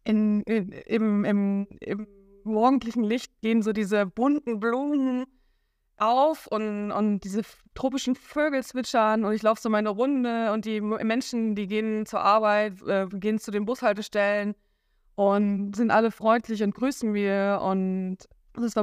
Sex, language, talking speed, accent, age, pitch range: female, German, 150 wpm, German, 20-39, 205-230 Hz